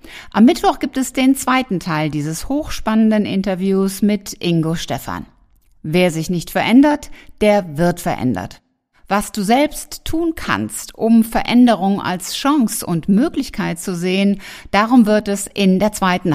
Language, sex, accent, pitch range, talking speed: German, female, German, 165-220 Hz, 145 wpm